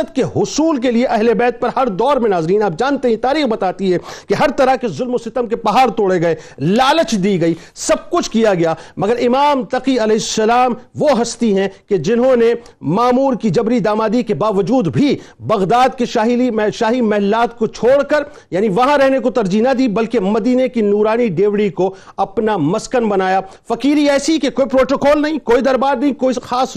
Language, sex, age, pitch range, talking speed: Urdu, male, 50-69, 185-255 Hz, 195 wpm